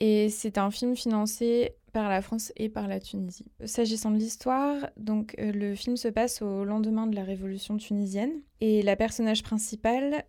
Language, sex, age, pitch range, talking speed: French, female, 20-39, 195-220 Hz, 175 wpm